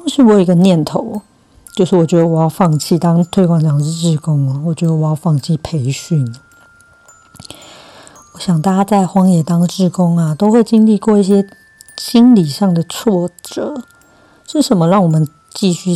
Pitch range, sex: 160-195 Hz, female